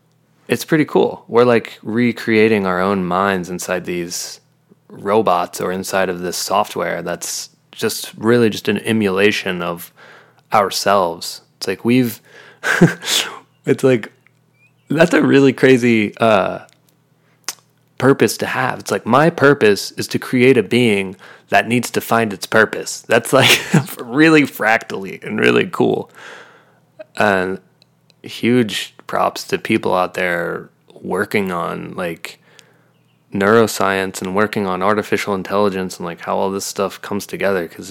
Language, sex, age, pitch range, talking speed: English, male, 20-39, 100-140 Hz, 135 wpm